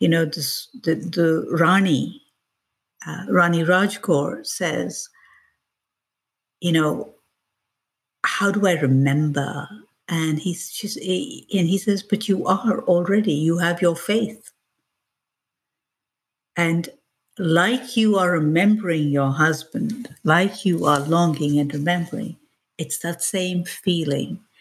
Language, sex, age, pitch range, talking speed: English, female, 60-79, 150-195 Hz, 115 wpm